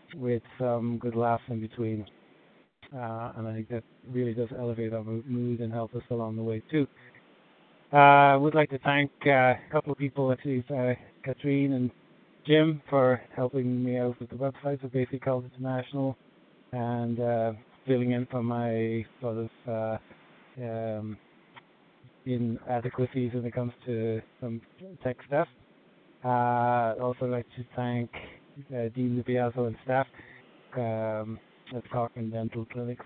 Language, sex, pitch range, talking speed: English, male, 115-130 Hz, 155 wpm